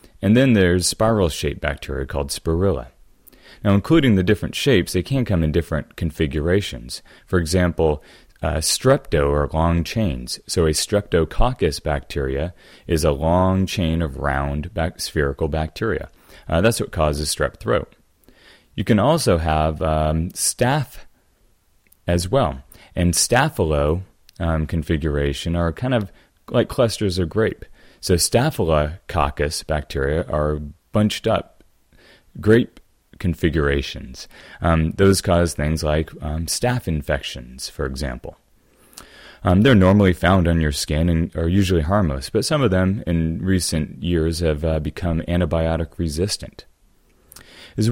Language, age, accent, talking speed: English, 30-49, American, 130 wpm